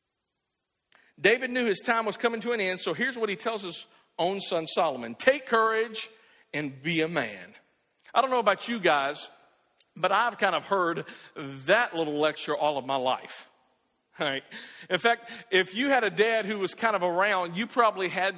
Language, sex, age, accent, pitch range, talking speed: English, male, 50-69, American, 155-225 Hz, 185 wpm